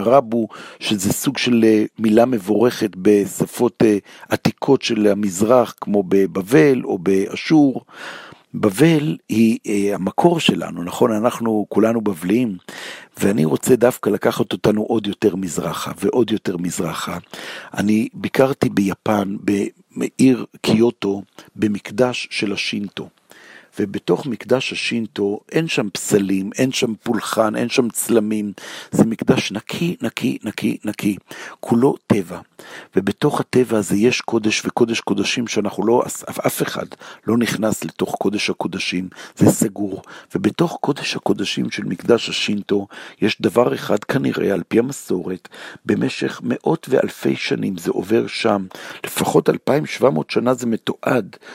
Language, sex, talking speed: Hebrew, male, 120 wpm